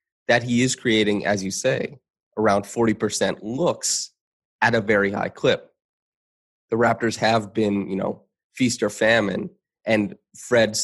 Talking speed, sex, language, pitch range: 145 wpm, male, English, 100-110 Hz